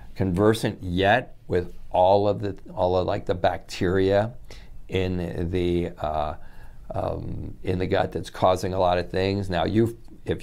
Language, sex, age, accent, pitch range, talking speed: English, male, 50-69, American, 85-100 Hz, 155 wpm